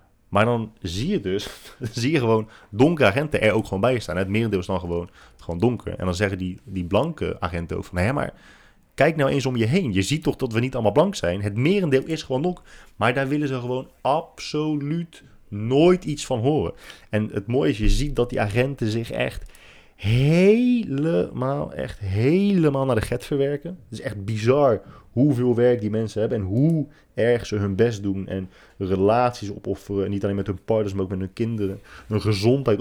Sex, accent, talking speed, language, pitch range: male, Dutch, 205 wpm, Dutch, 100-130 Hz